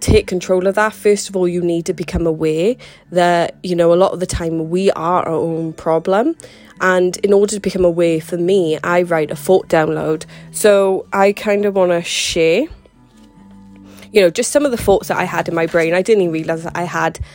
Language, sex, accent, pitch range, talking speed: English, female, British, 165-195 Hz, 225 wpm